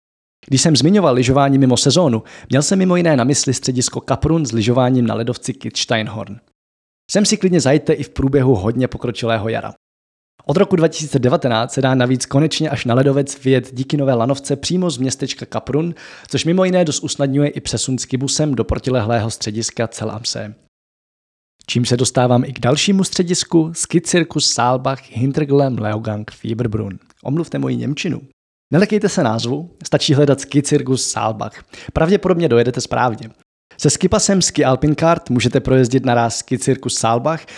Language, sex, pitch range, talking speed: Czech, male, 115-150 Hz, 150 wpm